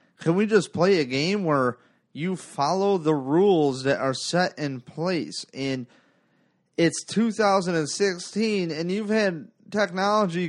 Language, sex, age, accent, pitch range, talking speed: English, male, 30-49, American, 145-195 Hz, 130 wpm